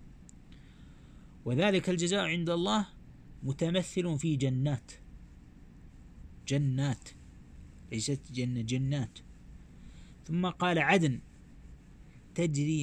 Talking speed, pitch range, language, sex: 70 wpm, 110-155 Hz, Arabic, male